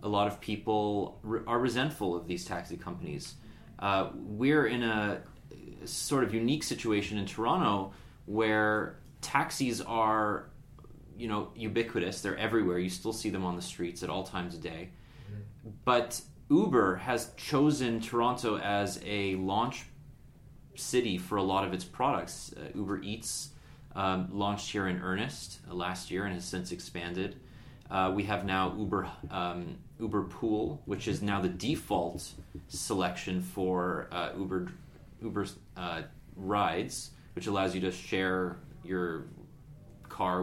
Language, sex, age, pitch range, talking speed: English, male, 30-49, 95-115 Hz, 145 wpm